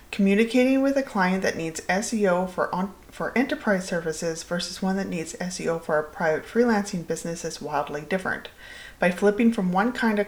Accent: American